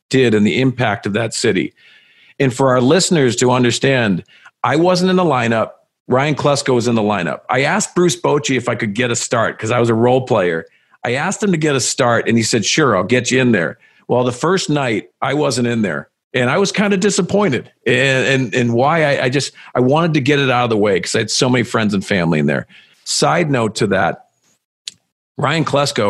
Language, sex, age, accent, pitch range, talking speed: English, male, 50-69, American, 115-145 Hz, 230 wpm